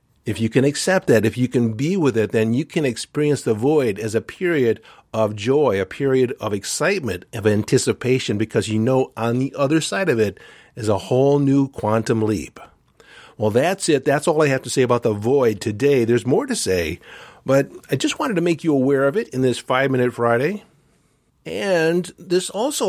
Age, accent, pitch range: 50-69, American, 115-140 Hz